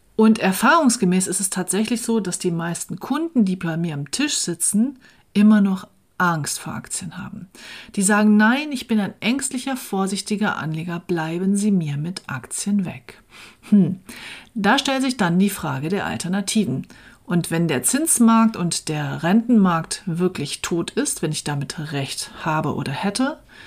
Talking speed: 160 wpm